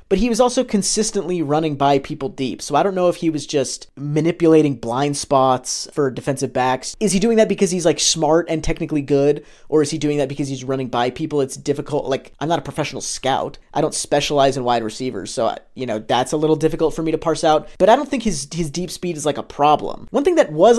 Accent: American